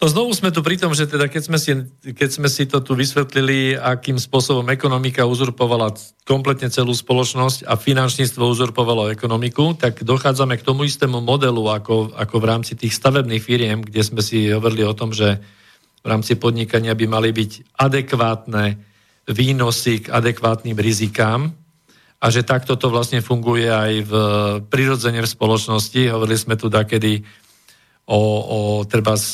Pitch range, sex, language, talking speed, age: 110-135 Hz, male, Slovak, 155 wpm, 50-69